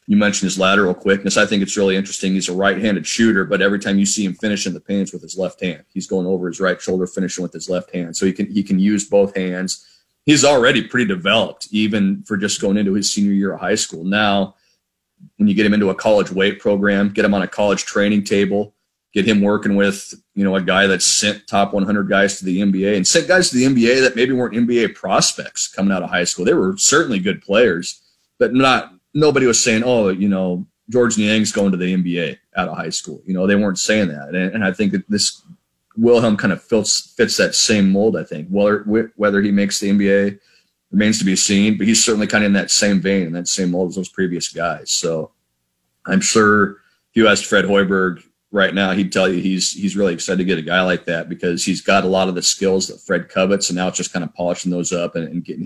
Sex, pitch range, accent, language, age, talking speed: male, 95-105 Hz, American, English, 30-49, 245 wpm